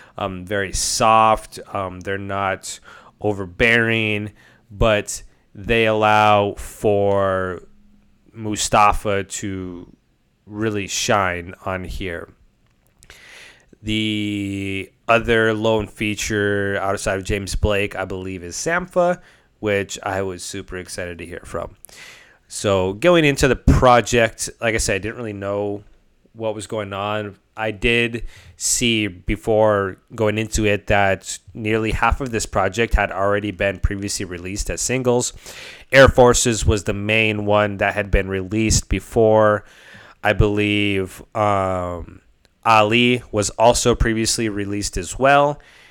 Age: 20-39